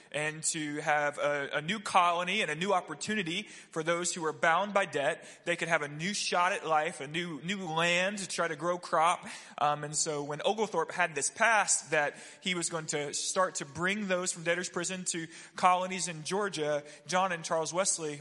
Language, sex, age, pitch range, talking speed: English, male, 20-39, 145-180 Hz, 210 wpm